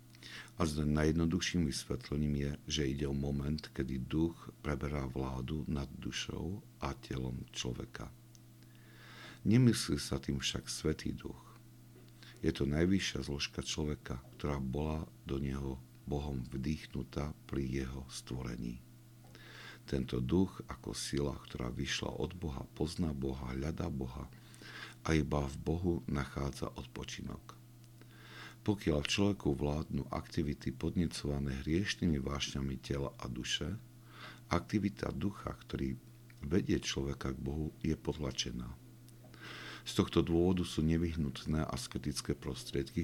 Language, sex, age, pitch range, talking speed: Slovak, male, 60-79, 65-95 Hz, 115 wpm